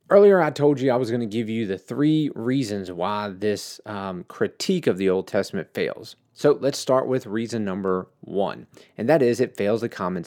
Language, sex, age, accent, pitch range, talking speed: English, male, 30-49, American, 110-135 Hz, 210 wpm